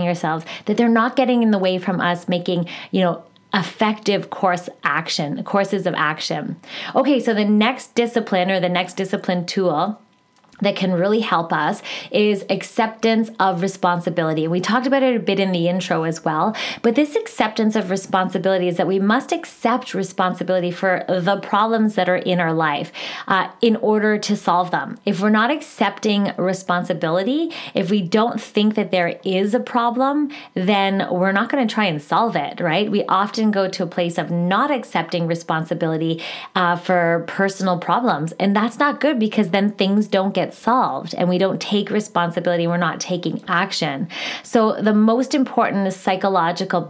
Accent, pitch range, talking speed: American, 180-220 Hz, 175 wpm